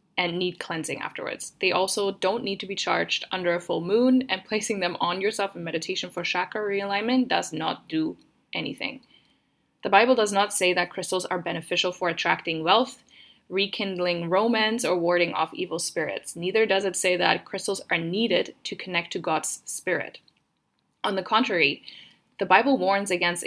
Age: 10-29